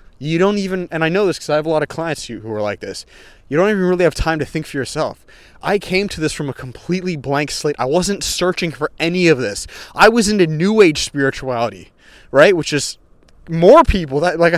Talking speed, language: 235 wpm, English